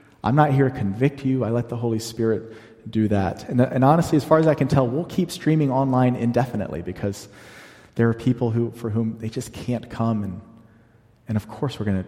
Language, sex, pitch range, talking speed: English, male, 110-145 Hz, 220 wpm